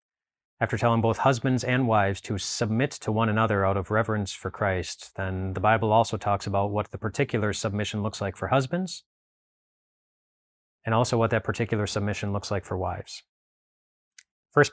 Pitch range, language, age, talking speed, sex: 100-120 Hz, English, 30-49, 165 wpm, male